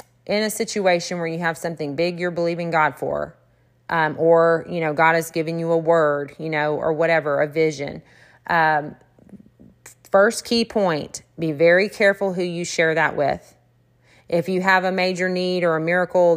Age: 30-49